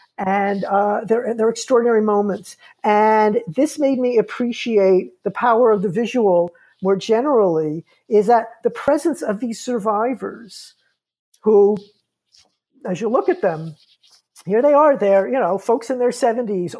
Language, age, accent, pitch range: English, 50-69, American, 200-245 Hz